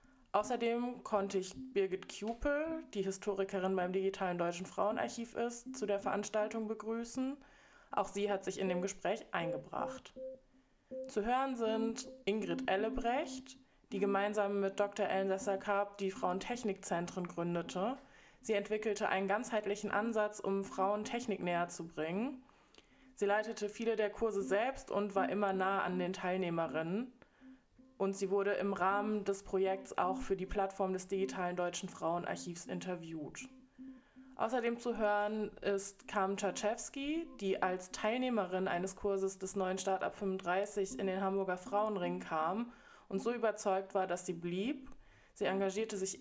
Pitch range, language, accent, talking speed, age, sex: 190-235 Hz, English, German, 140 wpm, 20-39, female